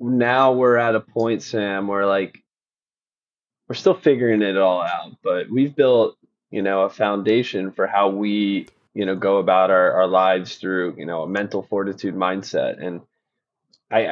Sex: male